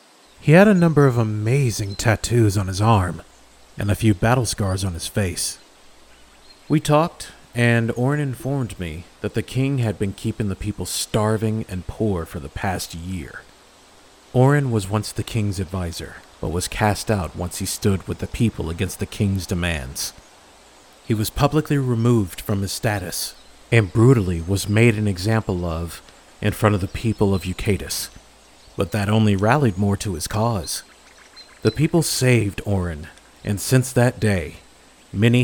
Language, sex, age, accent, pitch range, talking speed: English, male, 40-59, American, 95-120 Hz, 165 wpm